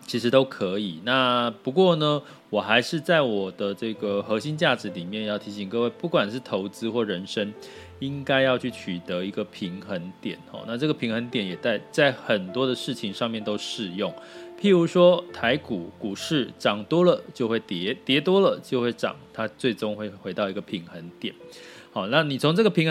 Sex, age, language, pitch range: male, 20-39, Chinese, 100-135 Hz